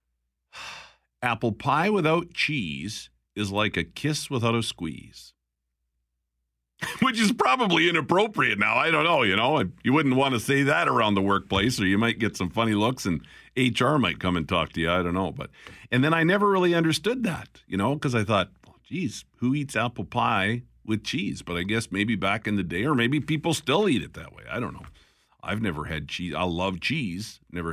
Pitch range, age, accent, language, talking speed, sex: 90-140 Hz, 50-69, American, English, 210 wpm, male